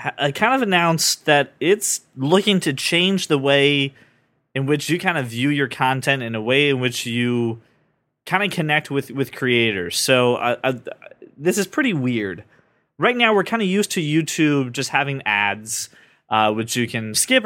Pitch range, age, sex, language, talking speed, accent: 120-155 Hz, 20-39, male, English, 185 wpm, American